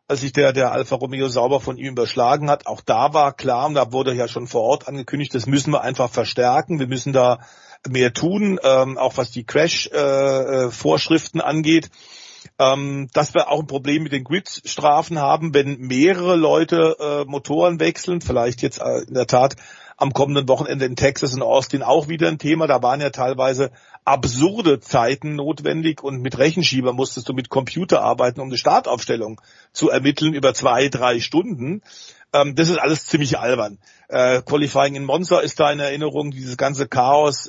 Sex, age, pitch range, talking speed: male, 40-59, 130-150 Hz, 185 wpm